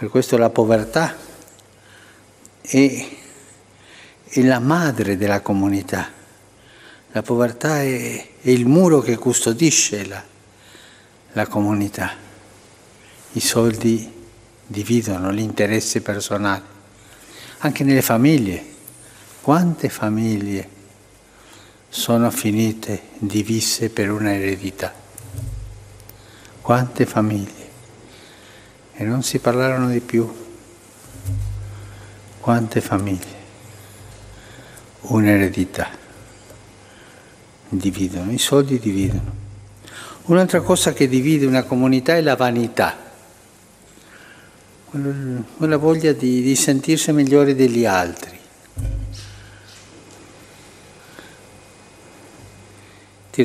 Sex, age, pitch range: male, 60-79, 105-130 Hz